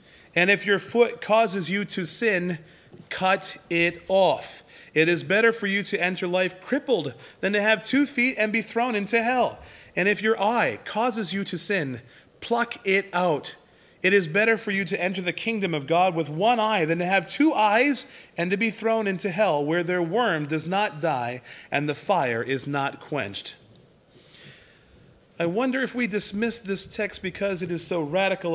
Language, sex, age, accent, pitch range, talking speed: English, male, 30-49, American, 165-215 Hz, 190 wpm